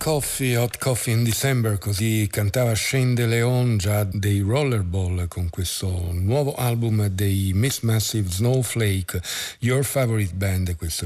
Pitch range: 95-115 Hz